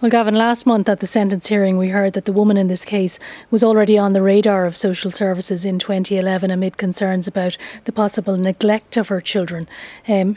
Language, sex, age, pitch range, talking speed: English, female, 30-49, 185-215 Hz, 210 wpm